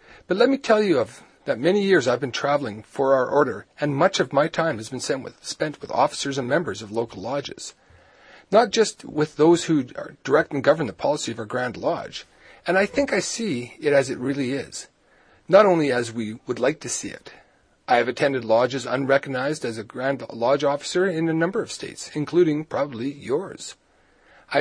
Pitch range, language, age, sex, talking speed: 130-185 Hz, English, 40-59, male, 205 wpm